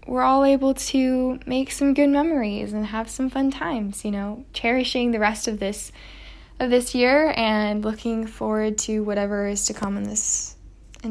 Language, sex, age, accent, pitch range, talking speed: English, female, 10-29, American, 205-255 Hz, 185 wpm